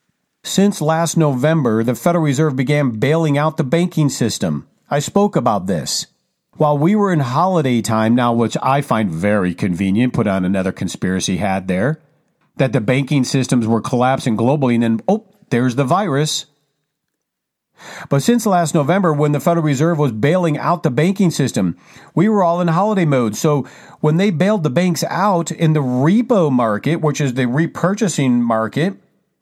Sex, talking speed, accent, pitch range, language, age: male, 170 wpm, American, 125-175 Hz, English, 50-69